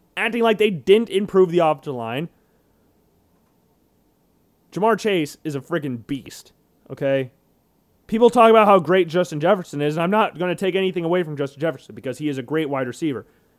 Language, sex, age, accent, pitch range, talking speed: English, male, 30-49, American, 150-220 Hz, 180 wpm